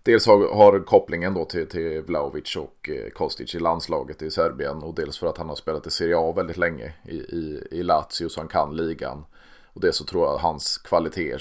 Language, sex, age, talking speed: Swedish, male, 30-49, 220 wpm